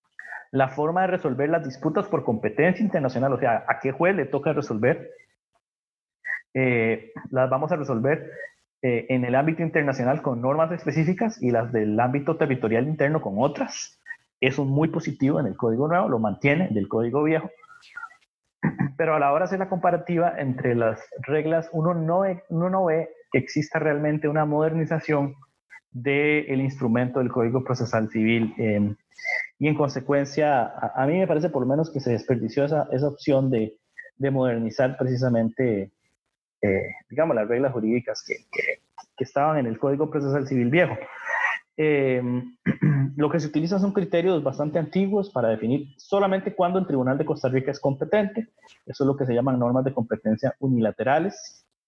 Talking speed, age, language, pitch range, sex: 170 wpm, 30-49, Spanish, 125-160 Hz, male